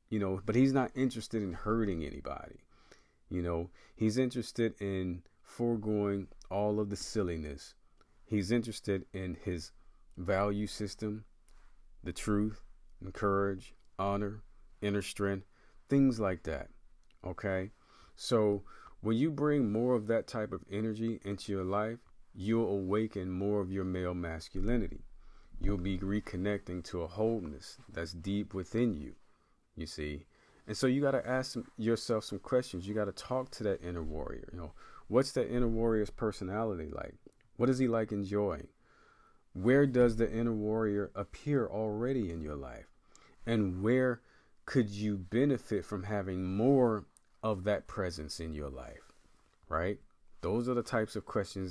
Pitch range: 90-115 Hz